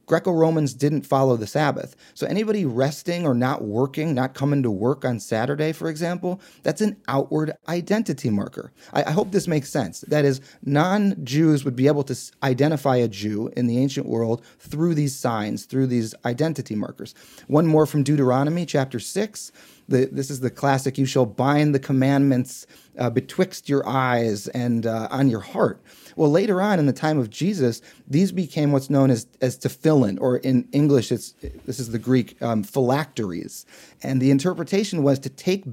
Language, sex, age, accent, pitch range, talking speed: English, male, 30-49, American, 130-155 Hz, 180 wpm